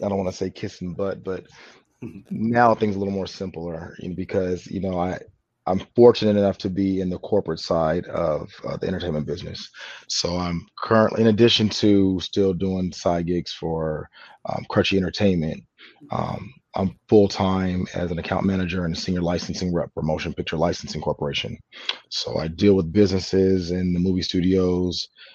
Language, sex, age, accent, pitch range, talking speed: English, male, 30-49, American, 90-100 Hz, 175 wpm